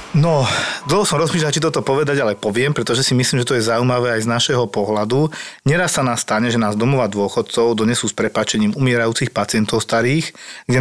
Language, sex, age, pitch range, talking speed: Slovak, male, 40-59, 115-140 Hz, 195 wpm